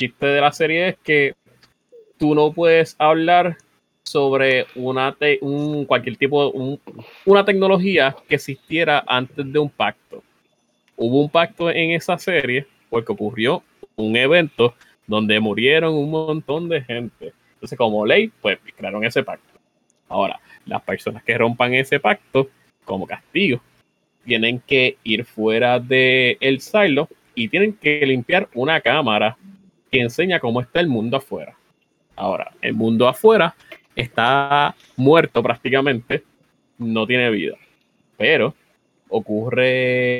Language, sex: Spanish, male